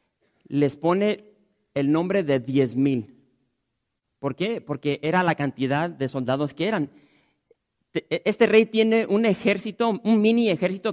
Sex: male